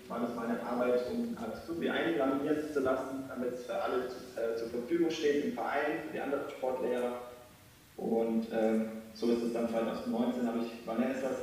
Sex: male